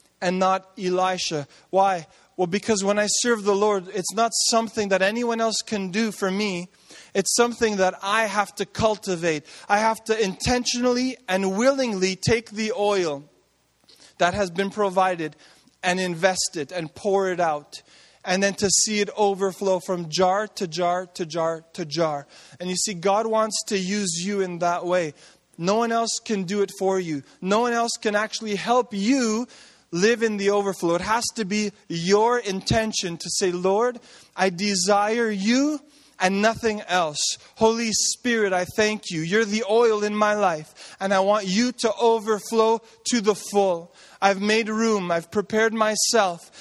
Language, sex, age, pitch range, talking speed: English, male, 20-39, 185-220 Hz, 170 wpm